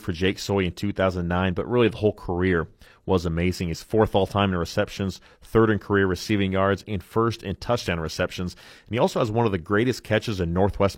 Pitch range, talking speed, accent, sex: 90-110 Hz, 210 wpm, American, male